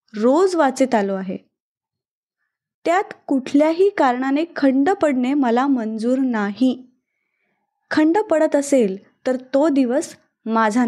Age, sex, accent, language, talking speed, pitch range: 20-39, female, native, Marathi, 105 wpm, 225-305 Hz